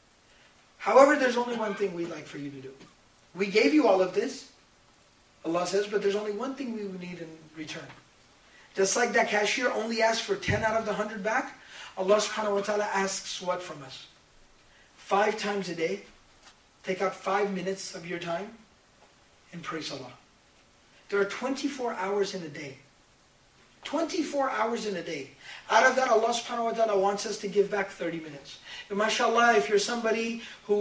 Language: English